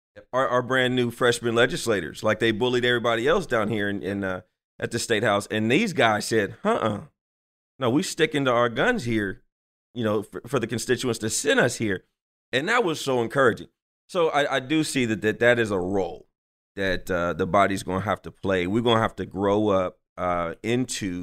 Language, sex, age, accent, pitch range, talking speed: English, male, 30-49, American, 90-115 Hz, 215 wpm